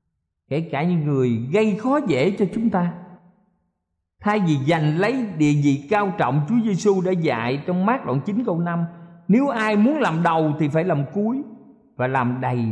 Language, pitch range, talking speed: Vietnamese, 125-185 Hz, 190 wpm